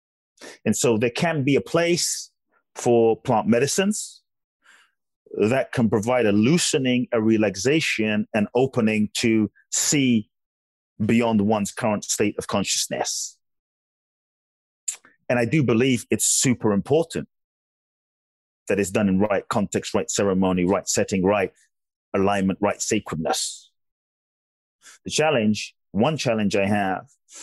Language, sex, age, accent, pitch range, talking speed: English, male, 30-49, British, 95-120 Hz, 120 wpm